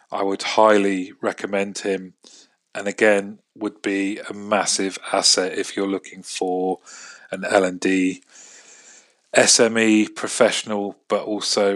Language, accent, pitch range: English, British, 95-110 Hz